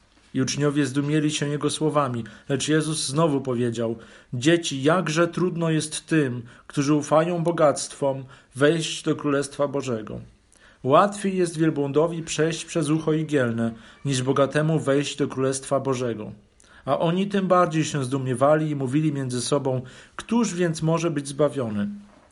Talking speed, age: 135 wpm, 40-59